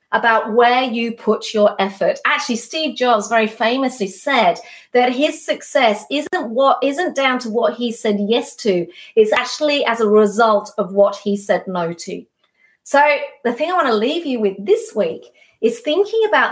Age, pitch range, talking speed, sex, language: 40-59, 205-285 Hz, 180 wpm, female, English